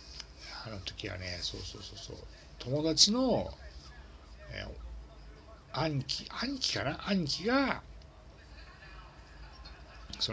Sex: male